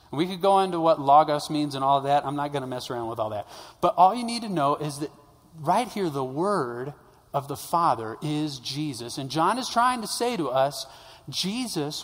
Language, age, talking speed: English, 40-59, 225 wpm